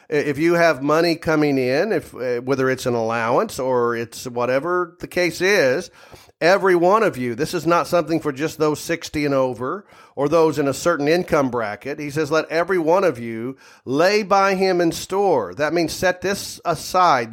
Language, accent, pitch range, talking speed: English, American, 140-175 Hz, 190 wpm